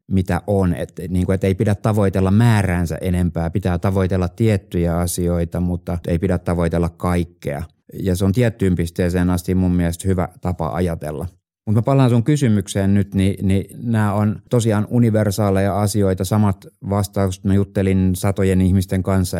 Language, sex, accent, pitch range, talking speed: Finnish, male, native, 85-95 Hz, 150 wpm